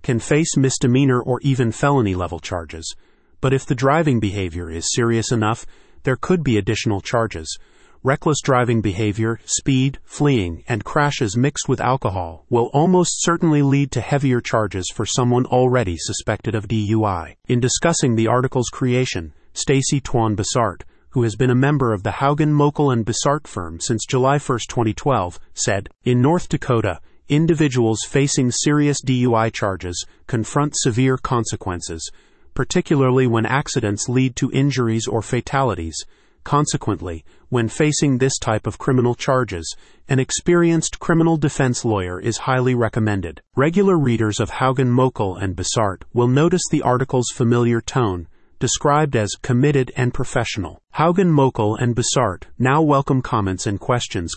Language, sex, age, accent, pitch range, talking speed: English, male, 30-49, American, 105-135 Hz, 145 wpm